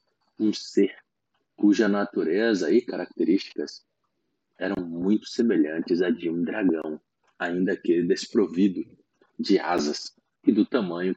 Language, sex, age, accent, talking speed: Portuguese, male, 40-59, Brazilian, 115 wpm